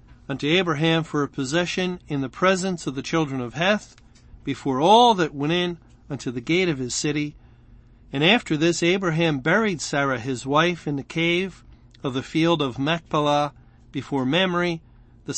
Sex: male